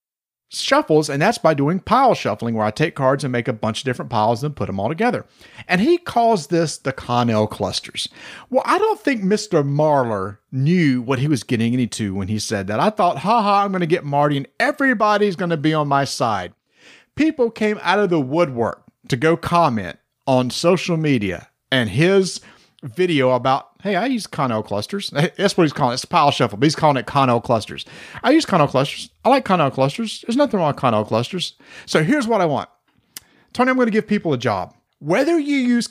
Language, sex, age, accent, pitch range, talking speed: English, male, 40-59, American, 130-200 Hz, 215 wpm